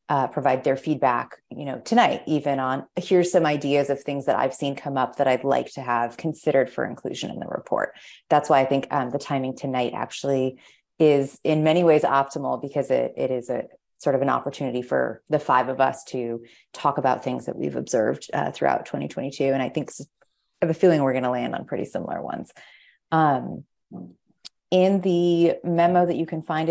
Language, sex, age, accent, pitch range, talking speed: English, female, 30-49, American, 130-165 Hz, 205 wpm